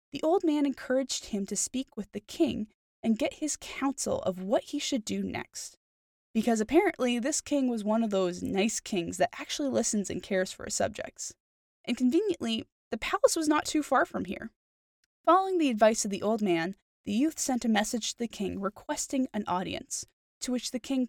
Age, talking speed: 10-29, 200 wpm